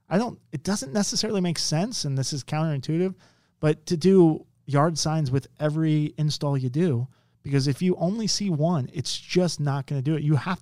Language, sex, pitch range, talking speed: English, male, 125-160 Hz, 205 wpm